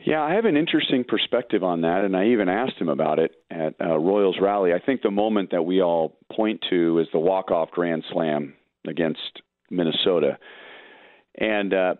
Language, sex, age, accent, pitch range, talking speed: English, male, 40-59, American, 85-105 Hz, 190 wpm